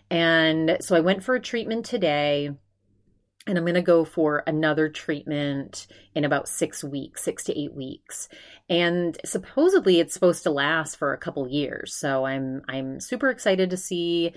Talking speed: 170 wpm